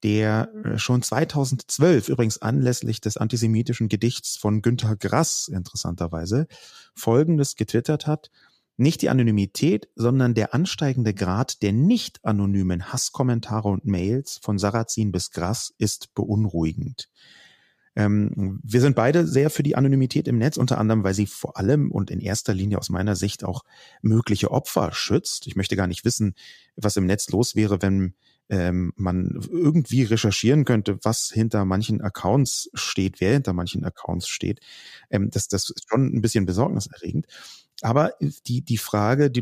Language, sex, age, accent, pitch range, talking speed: German, male, 30-49, German, 100-130 Hz, 150 wpm